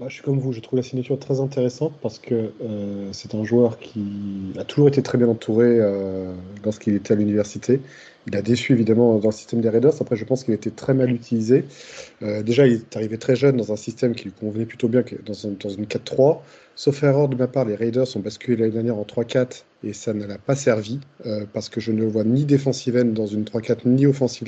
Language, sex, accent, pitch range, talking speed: French, male, French, 105-125 Hz, 245 wpm